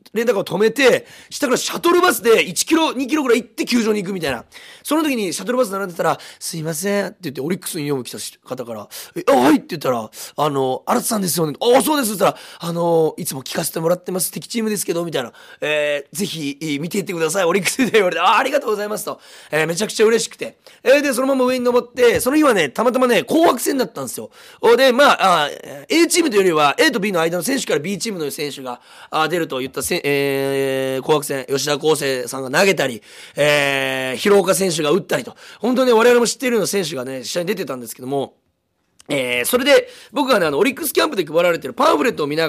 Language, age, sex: Japanese, 30-49, male